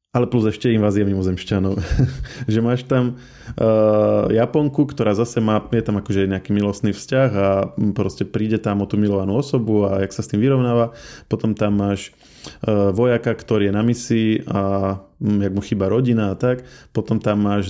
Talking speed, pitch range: 180 wpm, 100-120 Hz